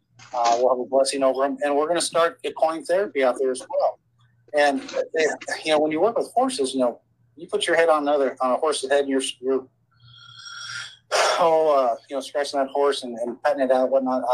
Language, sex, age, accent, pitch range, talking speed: English, male, 30-49, American, 125-145 Hz, 240 wpm